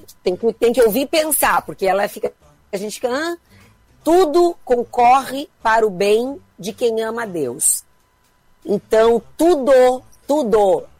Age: 40-59